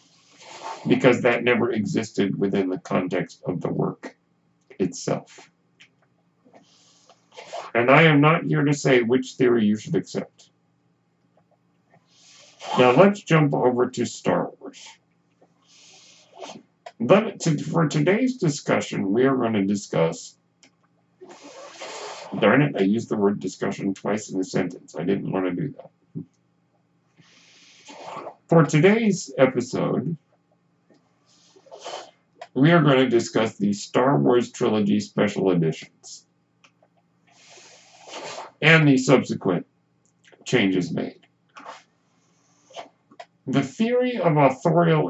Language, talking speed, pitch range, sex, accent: English, 105 wpm, 100-150 Hz, male, American